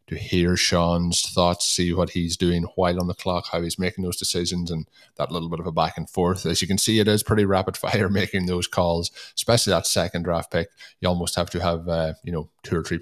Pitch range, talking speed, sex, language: 85-105 Hz, 250 wpm, male, English